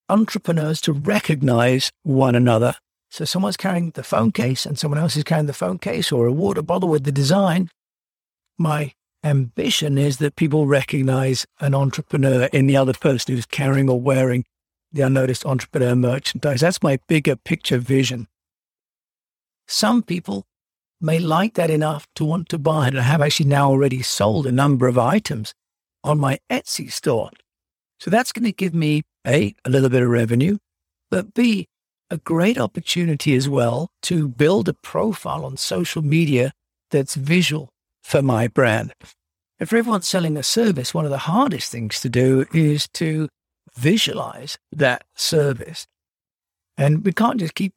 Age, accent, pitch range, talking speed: 60-79, British, 130-170 Hz, 160 wpm